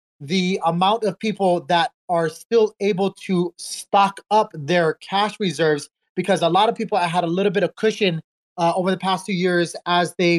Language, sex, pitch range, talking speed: English, male, 160-185 Hz, 190 wpm